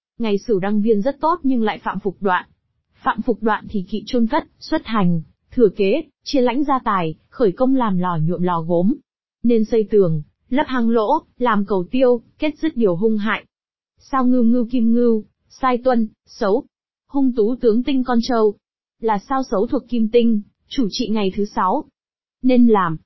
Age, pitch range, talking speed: 20-39, 200-255 Hz, 195 wpm